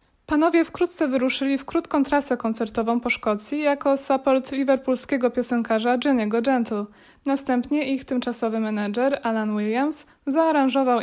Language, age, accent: Polish, 20-39, native